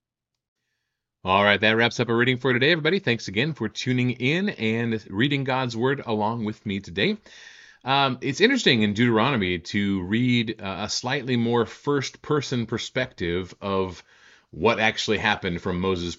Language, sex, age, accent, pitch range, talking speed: English, male, 30-49, American, 95-125 Hz, 155 wpm